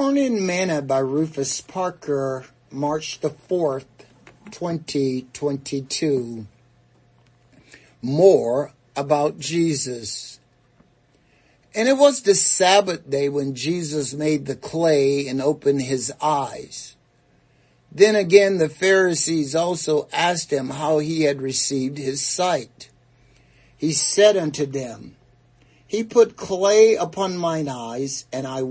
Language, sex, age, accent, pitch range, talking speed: English, male, 60-79, American, 135-180 Hz, 110 wpm